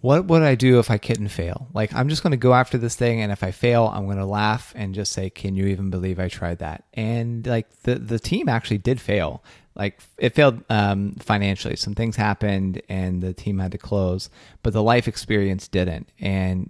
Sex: male